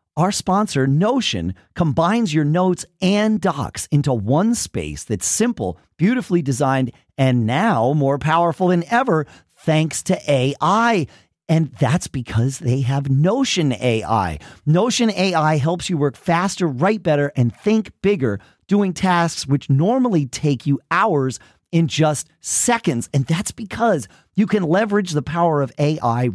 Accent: American